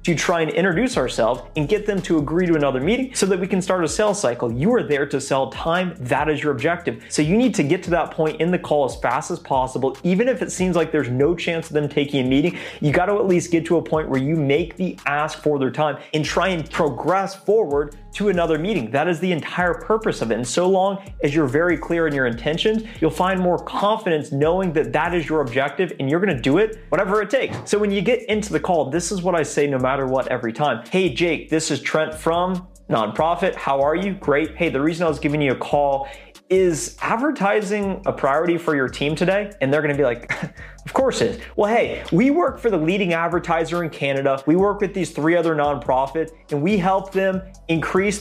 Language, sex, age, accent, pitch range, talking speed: English, male, 30-49, American, 145-185 Hz, 245 wpm